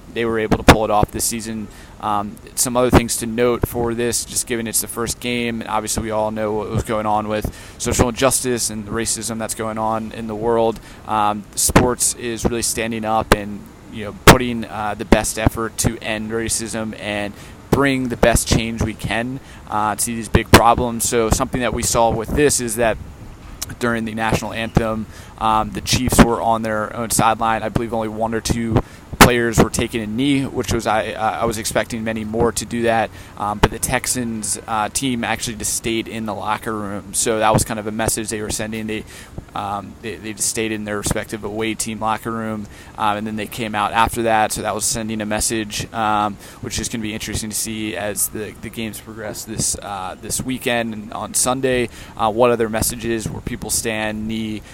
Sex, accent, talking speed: male, American, 215 wpm